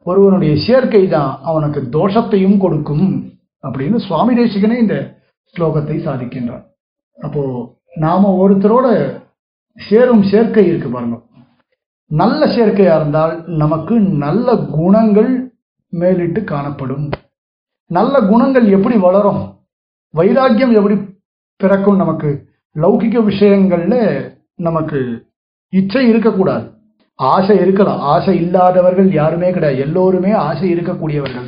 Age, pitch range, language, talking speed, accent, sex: 50-69, 155-205 Hz, Tamil, 95 wpm, native, male